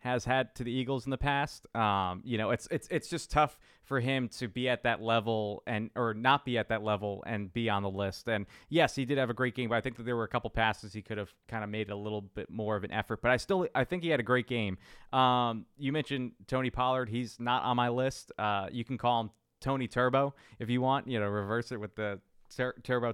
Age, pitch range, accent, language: 20-39, 110-130 Hz, American, English